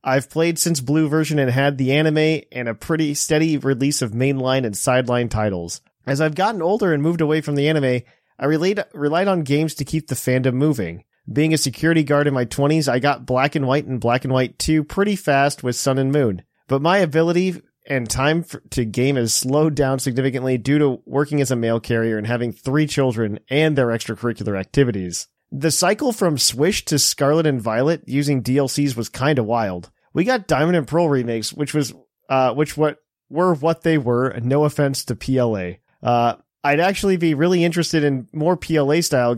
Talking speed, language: 200 wpm, English